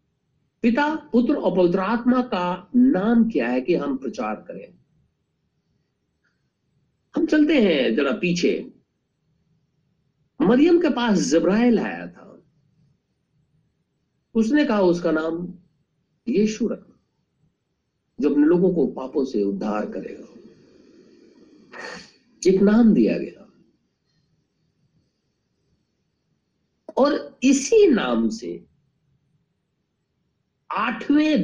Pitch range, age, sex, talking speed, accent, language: 165-265 Hz, 50-69, male, 90 wpm, native, Hindi